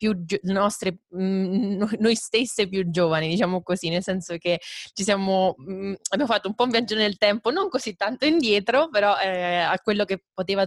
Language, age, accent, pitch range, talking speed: Italian, 20-39, native, 170-195 Hz, 190 wpm